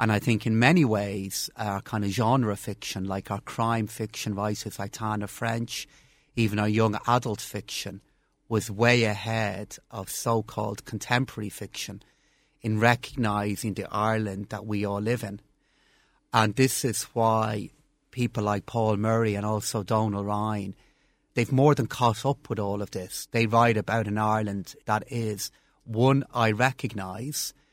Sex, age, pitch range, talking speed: male, 30-49, 105-120 Hz, 155 wpm